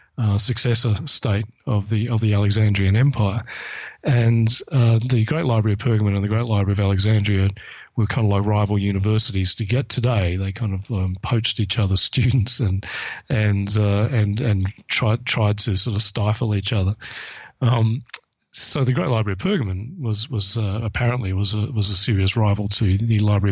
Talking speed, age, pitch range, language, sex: 185 wpm, 30-49, 100-120 Hz, English, male